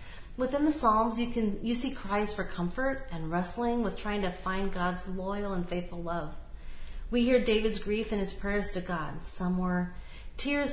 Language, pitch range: English, 185-235 Hz